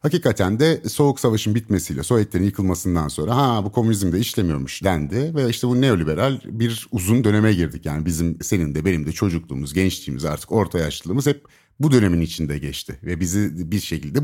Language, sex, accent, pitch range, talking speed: Turkish, male, native, 90-135 Hz, 175 wpm